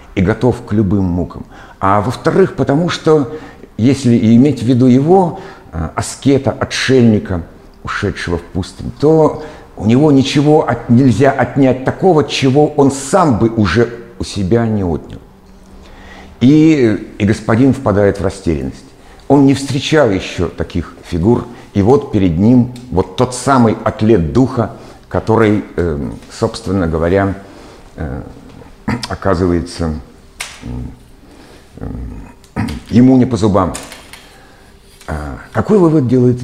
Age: 60-79